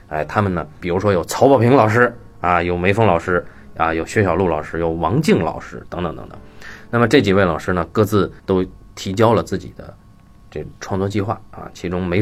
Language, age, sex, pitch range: Chinese, 20-39, male, 90-110 Hz